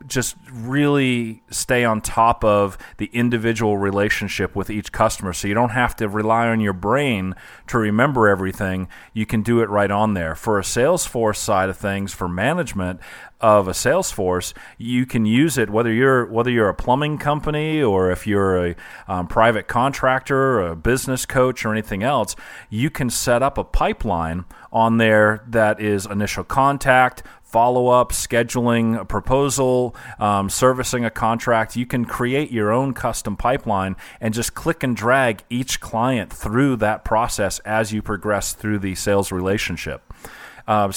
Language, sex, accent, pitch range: English, male, American, 100-125 Hz